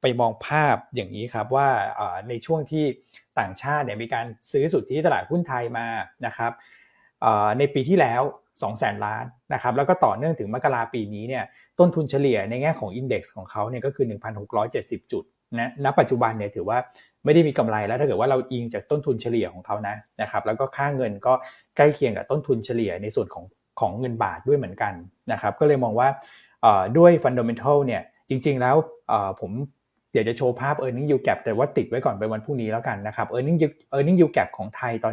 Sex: male